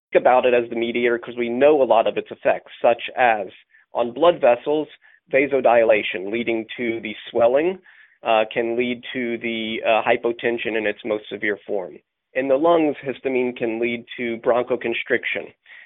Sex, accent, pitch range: male, American, 110-130 Hz